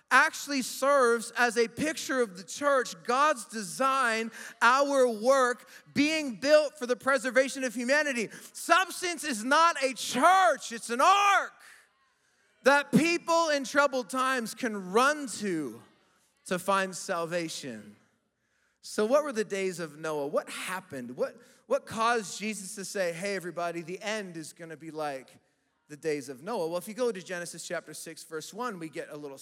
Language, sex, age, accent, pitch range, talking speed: English, male, 30-49, American, 175-245 Hz, 165 wpm